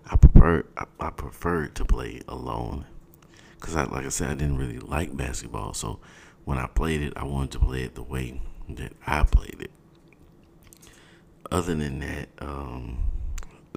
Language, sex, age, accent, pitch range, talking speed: English, male, 40-59, American, 65-80 Hz, 160 wpm